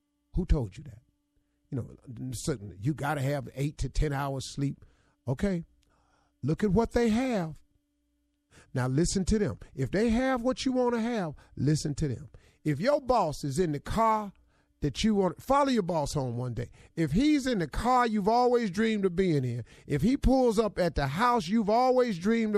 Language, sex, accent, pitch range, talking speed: English, male, American, 140-215 Hz, 195 wpm